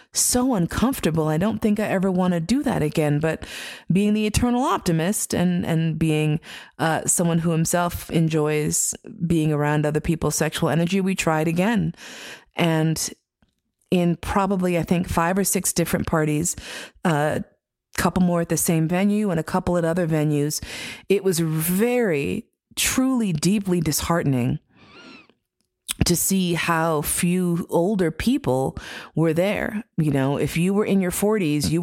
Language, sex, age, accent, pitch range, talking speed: English, female, 30-49, American, 160-210 Hz, 155 wpm